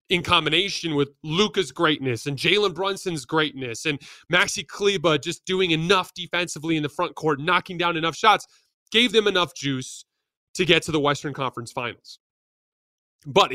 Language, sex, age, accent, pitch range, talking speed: English, male, 30-49, American, 145-185 Hz, 160 wpm